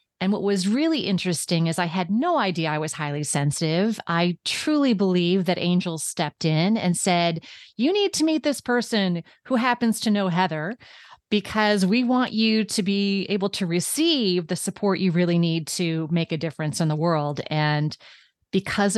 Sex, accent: female, American